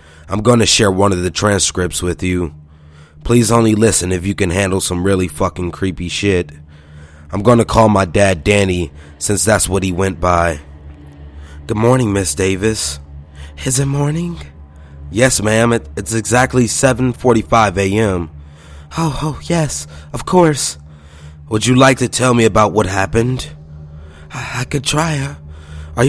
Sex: male